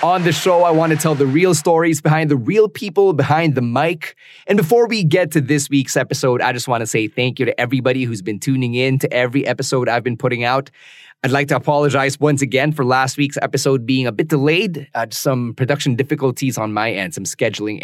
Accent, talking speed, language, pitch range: Filipino, 225 wpm, English, 120-150 Hz